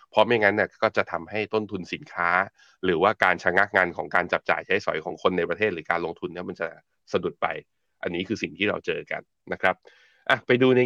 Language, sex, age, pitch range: Thai, male, 20-39, 90-110 Hz